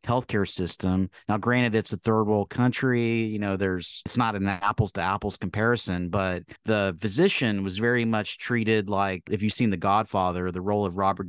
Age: 30-49